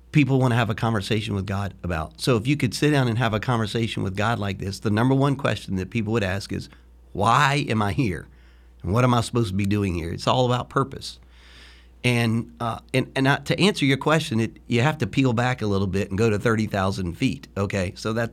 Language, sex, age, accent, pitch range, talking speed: English, male, 40-59, American, 95-125 Hz, 245 wpm